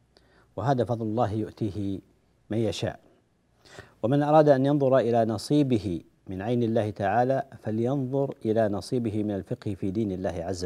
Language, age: Arabic, 50-69